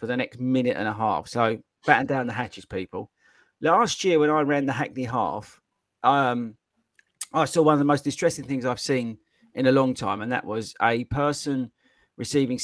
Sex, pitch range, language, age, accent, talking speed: male, 115-145 Hz, English, 40-59, British, 200 wpm